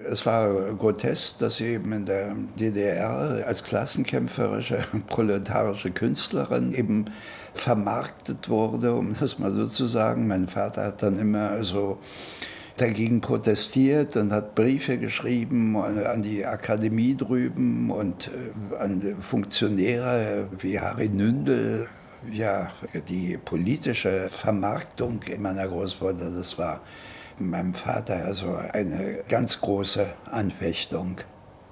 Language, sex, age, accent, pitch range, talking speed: German, male, 70-89, German, 100-120 Hz, 115 wpm